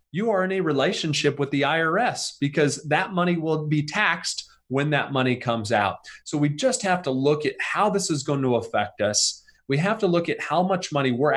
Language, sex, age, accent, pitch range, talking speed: English, male, 30-49, American, 125-170 Hz, 220 wpm